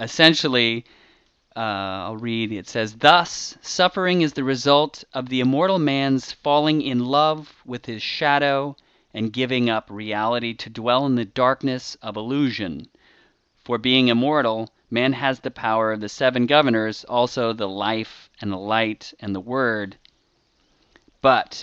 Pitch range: 110-140 Hz